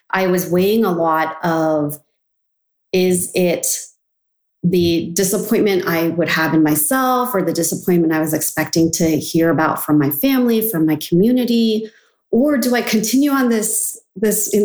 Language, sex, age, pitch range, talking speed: English, female, 30-49, 175-235 Hz, 155 wpm